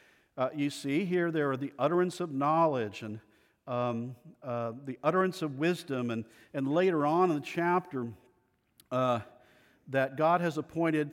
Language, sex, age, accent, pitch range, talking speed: English, male, 50-69, American, 130-175 Hz, 155 wpm